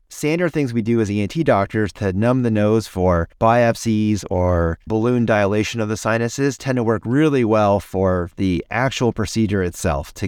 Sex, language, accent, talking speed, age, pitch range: male, English, American, 175 wpm, 30-49, 95-115 Hz